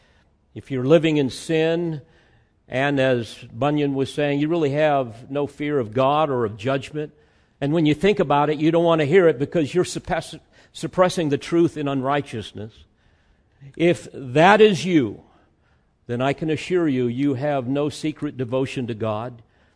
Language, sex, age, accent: English, male, 50-69, American